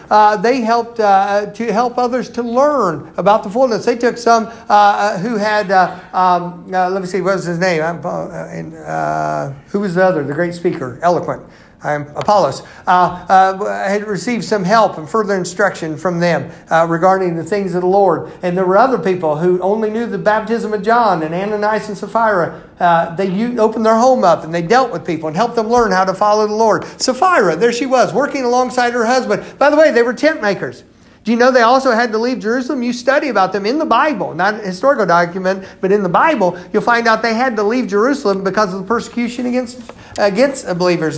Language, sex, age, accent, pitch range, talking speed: English, male, 50-69, American, 175-235 Hz, 220 wpm